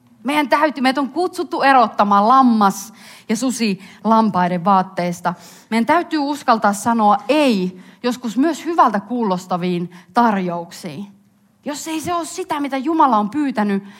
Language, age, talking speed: Finnish, 30-49, 120 wpm